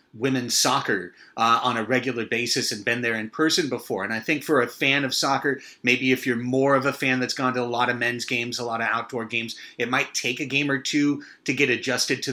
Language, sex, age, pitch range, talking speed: English, male, 30-49, 125-160 Hz, 255 wpm